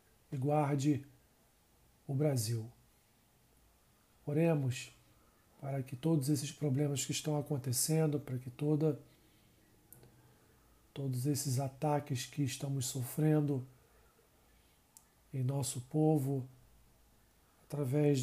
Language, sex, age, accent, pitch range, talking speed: Portuguese, male, 40-59, Brazilian, 125-150 Hz, 80 wpm